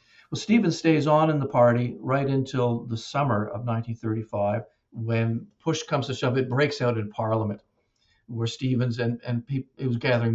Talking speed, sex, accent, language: 175 wpm, male, American, English